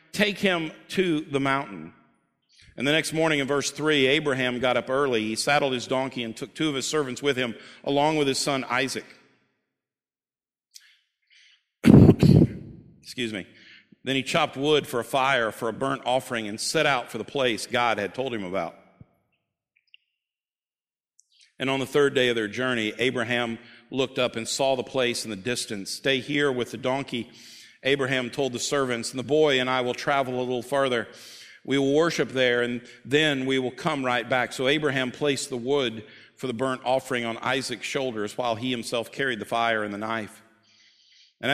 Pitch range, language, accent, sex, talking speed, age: 115-140 Hz, English, American, male, 185 wpm, 50-69